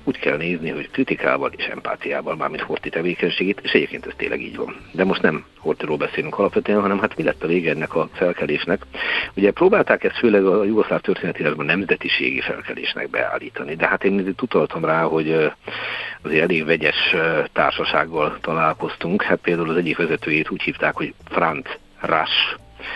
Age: 60-79